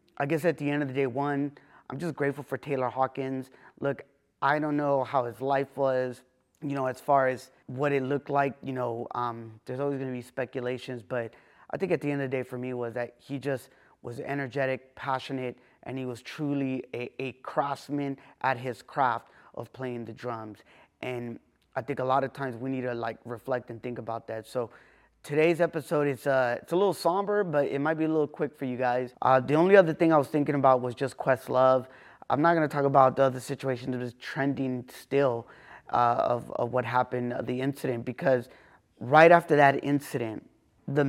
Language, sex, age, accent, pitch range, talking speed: English, male, 20-39, American, 125-140 Hz, 215 wpm